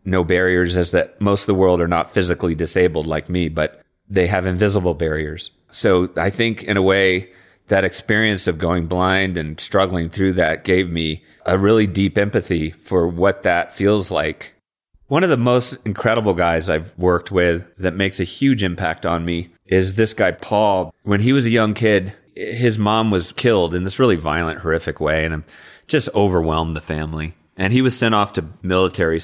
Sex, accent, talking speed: male, American, 195 wpm